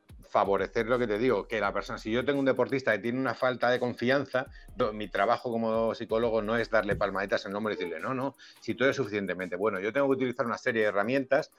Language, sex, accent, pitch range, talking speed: Spanish, male, Spanish, 105-125 Hz, 240 wpm